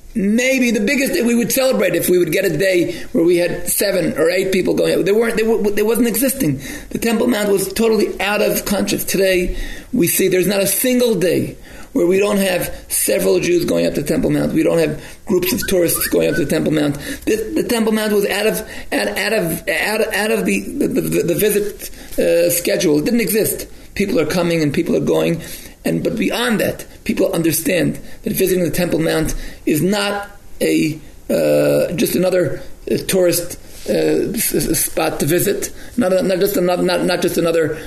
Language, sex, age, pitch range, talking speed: English, male, 40-59, 170-210 Hz, 210 wpm